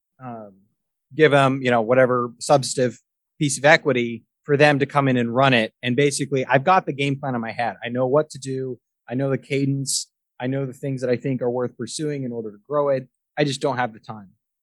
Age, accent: 30-49, American